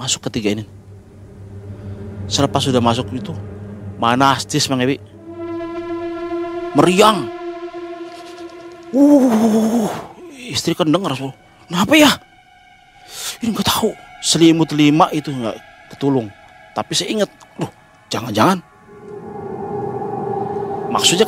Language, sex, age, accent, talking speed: Indonesian, male, 30-49, native, 80 wpm